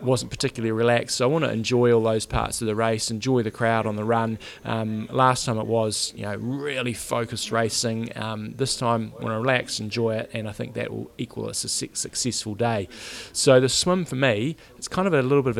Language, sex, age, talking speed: English, male, 20-39, 240 wpm